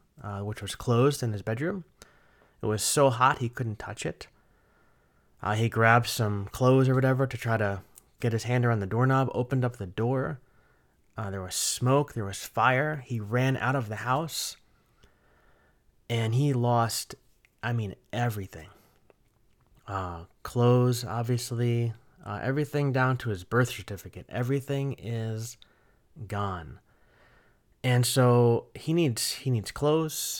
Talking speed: 145 wpm